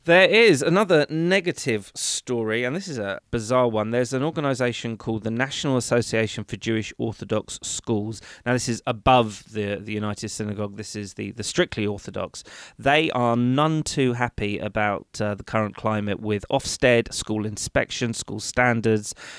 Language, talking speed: English, 160 wpm